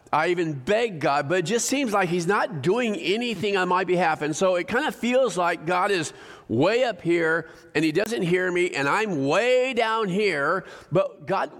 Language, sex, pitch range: English, male, 145-200 Hz